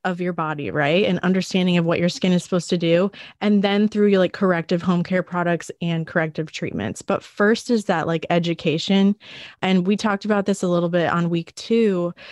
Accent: American